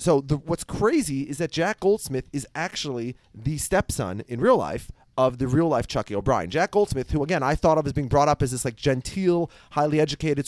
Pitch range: 125-165 Hz